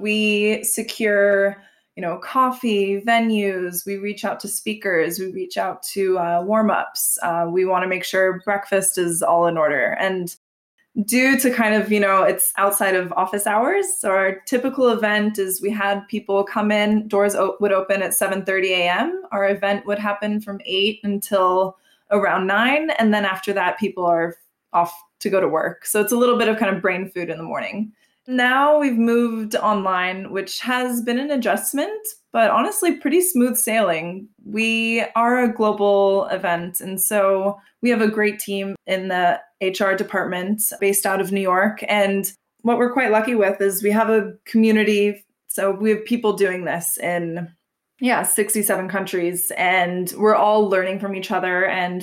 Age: 20-39